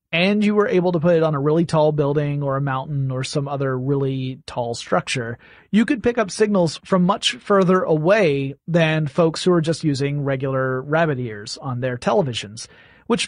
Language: English